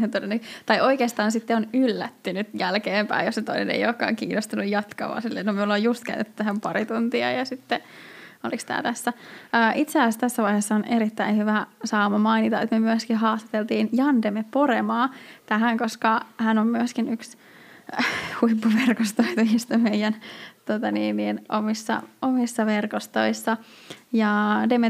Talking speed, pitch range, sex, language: 135 wpm, 215-250 Hz, female, Finnish